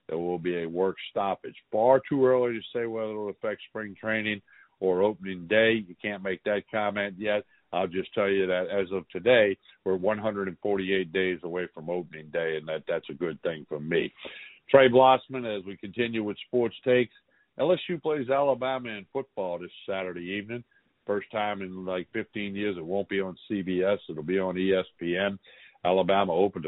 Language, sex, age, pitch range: English, male, 60-79, 95-115 Hz